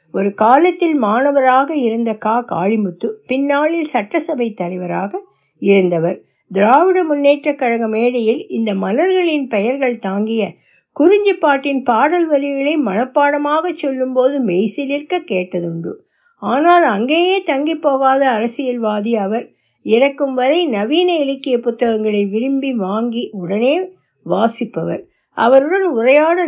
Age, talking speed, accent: 60-79, 100 wpm, native